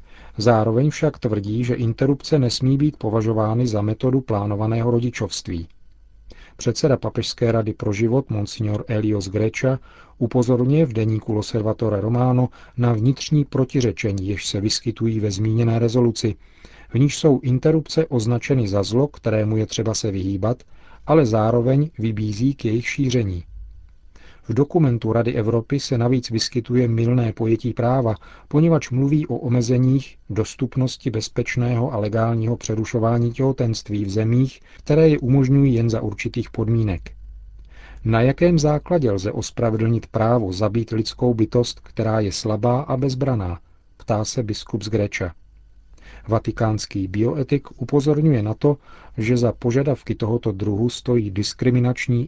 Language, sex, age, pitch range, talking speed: Czech, male, 40-59, 110-130 Hz, 130 wpm